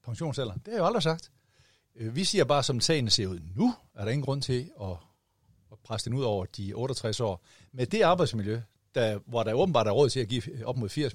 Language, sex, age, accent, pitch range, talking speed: Danish, male, 60-79, native, 105-145 Hz, 230 wpm